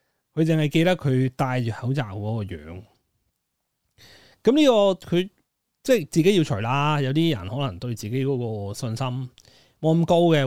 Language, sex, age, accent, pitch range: Chinese, male, 30-49, native, 110-155 Hz